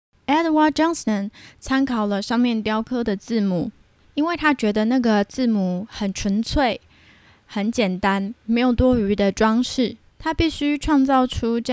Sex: female